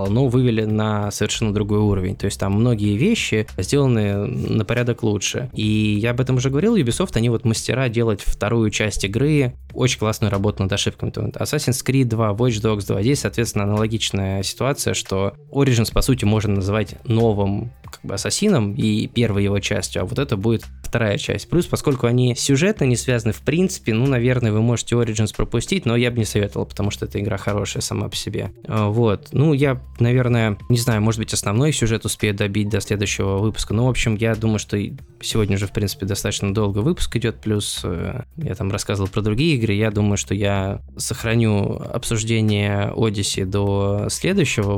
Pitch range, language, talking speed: 100-120 Hz, Russian, 180 wpm